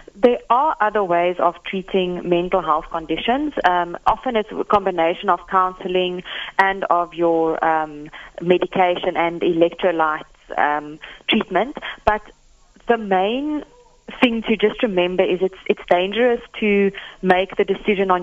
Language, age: English, 30-49